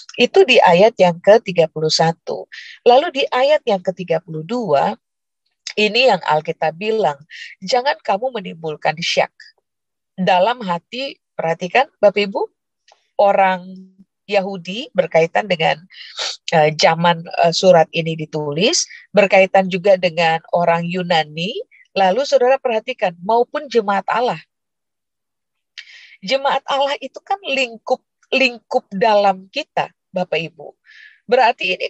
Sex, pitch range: female, 190-270 Hz